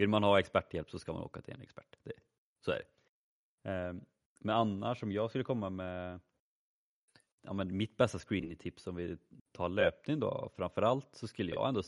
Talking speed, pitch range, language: 190 wpm, 90-110 Hz, Swedish